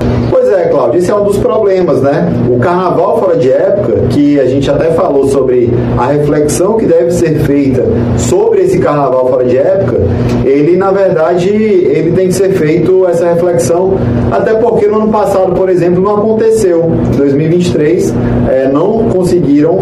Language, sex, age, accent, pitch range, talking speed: Portuguese, male, 30-49, Brazilian, 130-185 Hz, 165 wpm